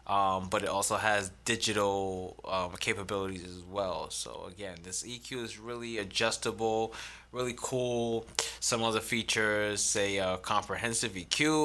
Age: 20-39